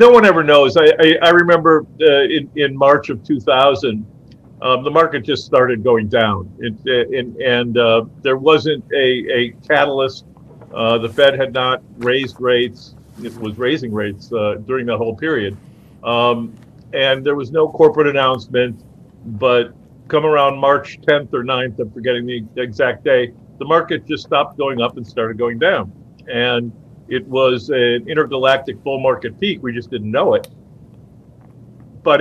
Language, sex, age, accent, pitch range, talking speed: English, male, 50-69, American, 120-145 Hz, 165 wpm